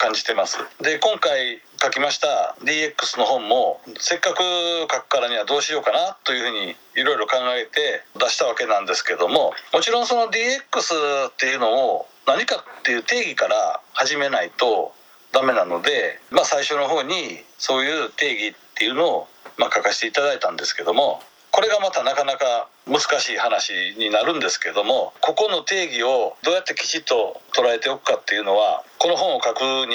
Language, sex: Japanese, male